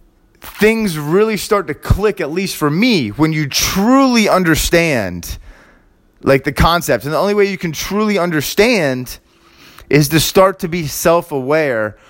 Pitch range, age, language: 130-195 Hz, 30-49, English